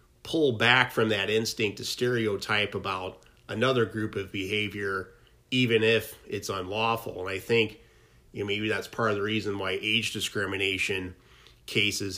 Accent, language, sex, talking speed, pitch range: American, English, male, 155 wpm, 100-115 Hz